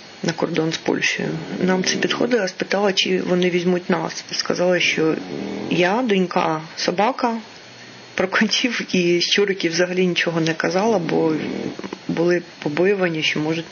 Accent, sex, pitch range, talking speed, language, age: native, female, 175-215 Hz, 135 wpm, Ukrainian, 30-49